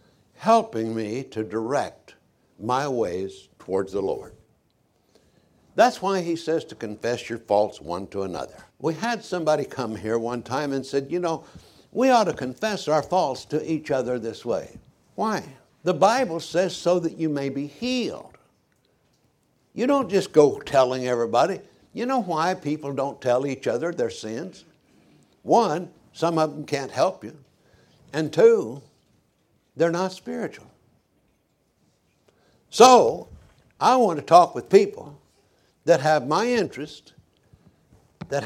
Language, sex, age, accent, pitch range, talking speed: English, male, 60-79, American, 130-210 Hz, 145 wpm